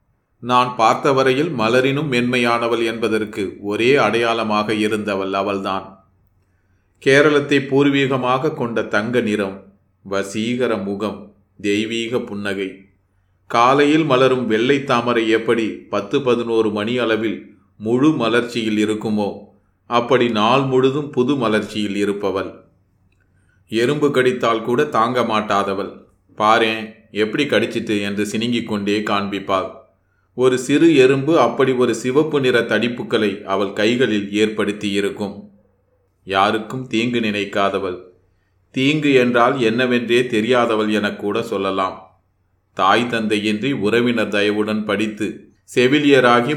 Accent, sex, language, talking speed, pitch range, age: native, male, Tamil, 95 wpm, 100-120 Hz, 30-49